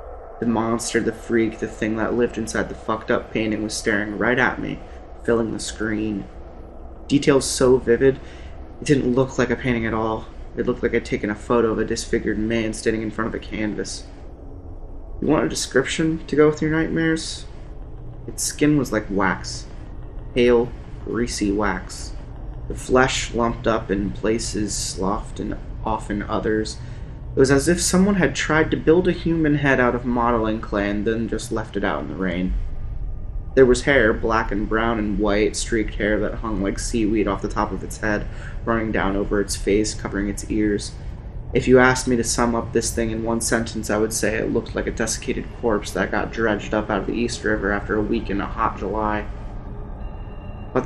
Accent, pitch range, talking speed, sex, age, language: American, 100-120 Hz, 195 wpm, male, 20-39, English